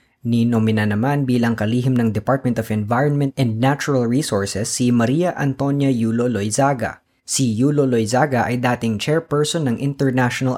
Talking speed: 130 wpm